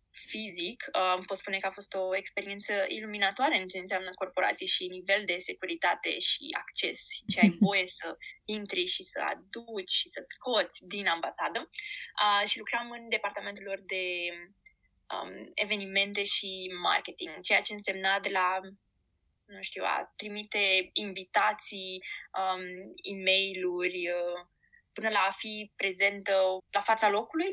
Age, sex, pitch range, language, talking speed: 20-39, female, 195-235 Hz, Romanian, 130 wpm